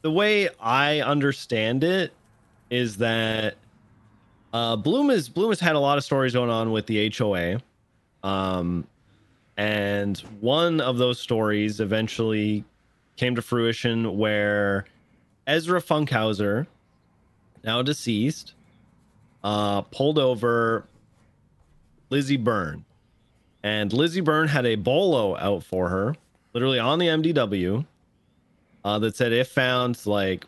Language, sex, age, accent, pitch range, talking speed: English, male, 30-49, American, 105-130 Hz, 120 wpm